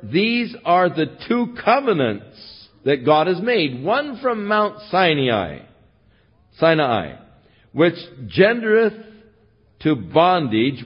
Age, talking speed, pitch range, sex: 60-79, 100 wpm, 130-175 Hz, male